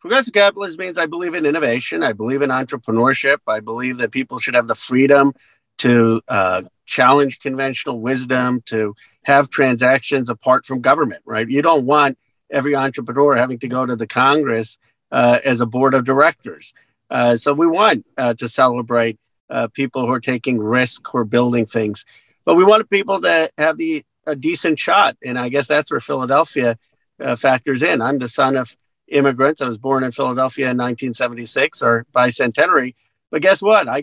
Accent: American